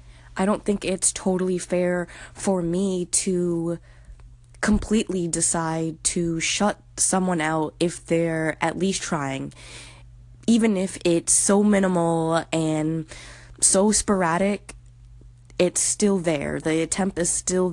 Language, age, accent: English, 10-29, American